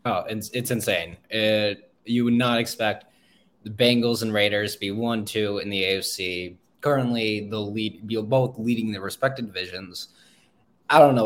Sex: male